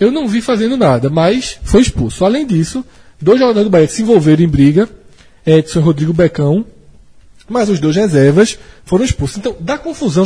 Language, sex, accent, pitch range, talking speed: Portuguese, male, Brazilian, 150-215 Hz, 180 wpm